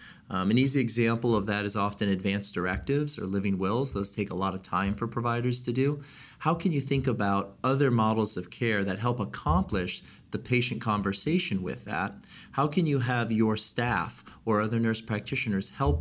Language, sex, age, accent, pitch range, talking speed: English, male, 30-49, American, 100-125 Hz, 190 wpm